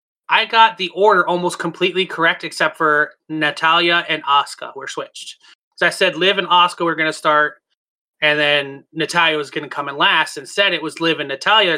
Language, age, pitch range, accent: English, 30-49, 150-180 Hz, American